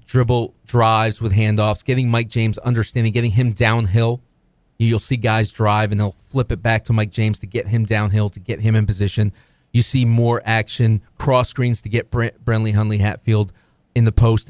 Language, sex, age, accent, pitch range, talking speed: English, male, 30-49, American, 105-120 Hz, 190 wpm